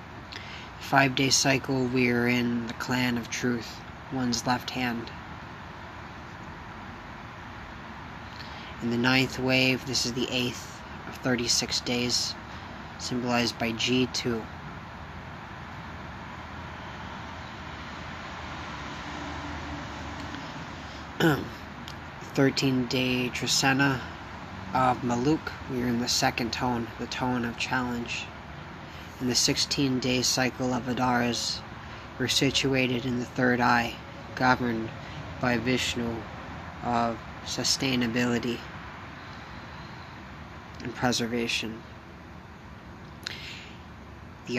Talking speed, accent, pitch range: 80 wpm, American, 110-125 Hz